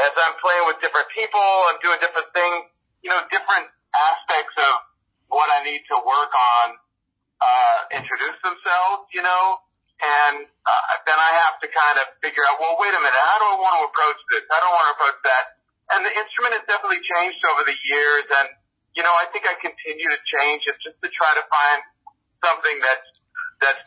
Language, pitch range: English, 145-205 Hz